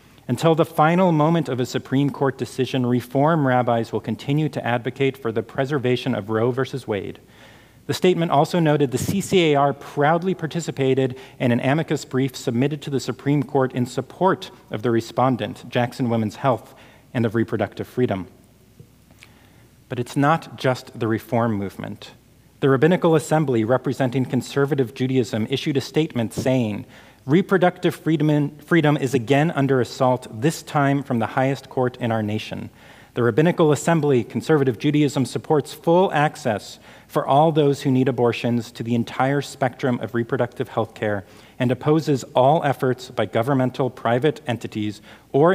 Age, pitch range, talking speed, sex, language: 40-59, 120-145 Hz, 150 wpm, male, English